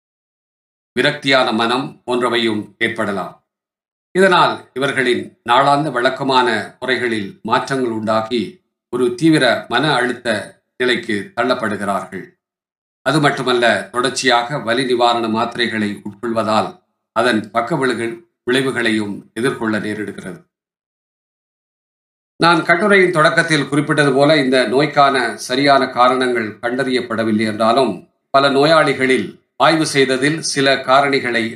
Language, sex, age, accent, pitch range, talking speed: Tamil, male, 50-69, native, 115-140 Hz, 85 wpm